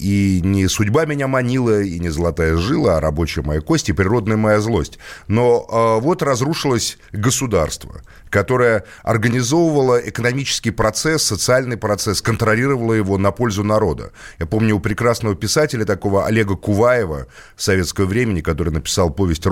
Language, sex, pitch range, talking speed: Russian, male, 90-120 Hz, 145 wpm